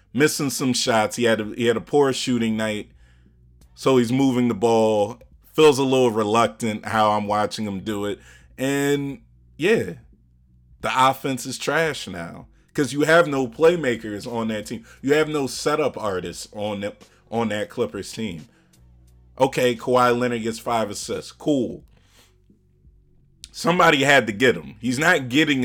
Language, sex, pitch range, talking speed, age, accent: English, male, 100-130 Hz, 150 wpm, 30-49, American